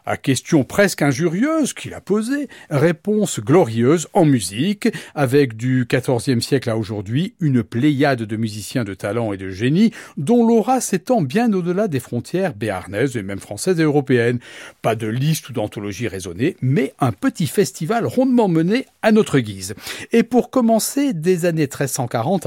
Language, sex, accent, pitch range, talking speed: French, male, French, 125-195 Hz, 160 wpm